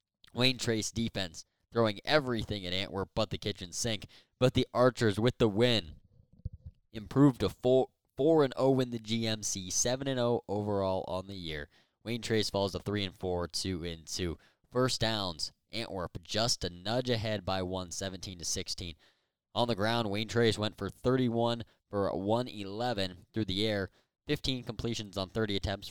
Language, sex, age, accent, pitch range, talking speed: English, male, 20-39, American, 95-120 Hz, 140 wpm